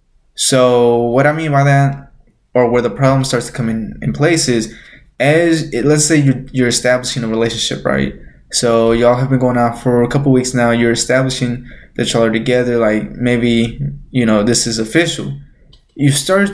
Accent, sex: American, male